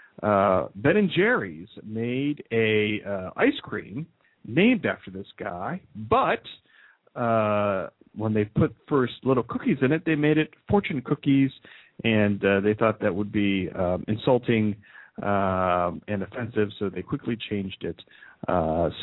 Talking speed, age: 145 wpm, 50-69